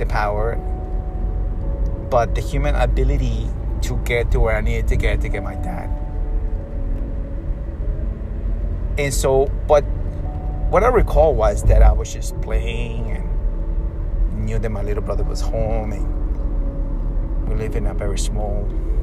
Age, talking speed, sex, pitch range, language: 30-49, 140 wpm, male, 80-110 Hz, English